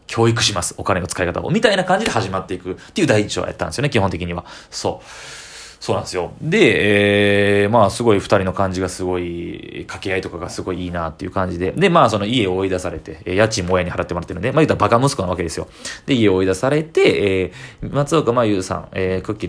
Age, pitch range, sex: 20-39, 90-115 Hz, male